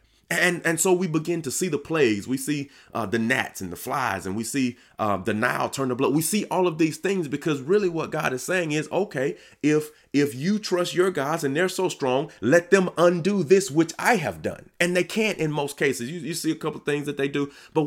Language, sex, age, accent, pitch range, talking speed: English, male, 30-49, American, 105-150 Hz, 250 wpm